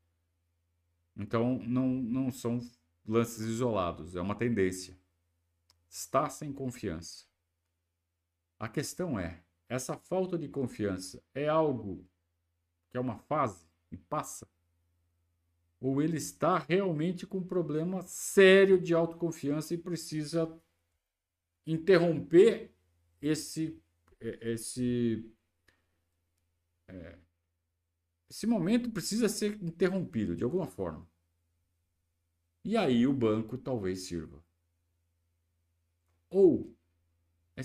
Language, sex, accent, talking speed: Portuguese, male, Brazilian, 90 wpm